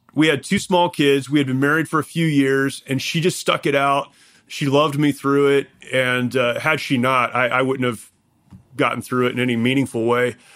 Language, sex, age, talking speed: English, male, 30-49, 225 wpm